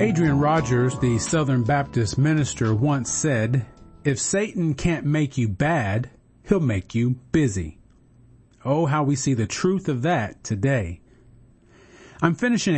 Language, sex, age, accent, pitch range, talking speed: English, male, 40-59, American, 120-155 Hz, 135 wpm